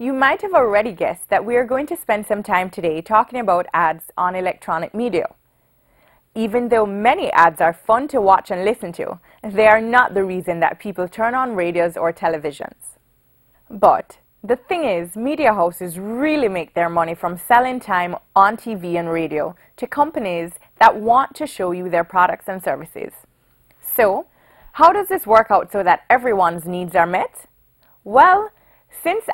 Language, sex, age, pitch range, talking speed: English, female, 20-39, 175-245 Hz, 175 wpm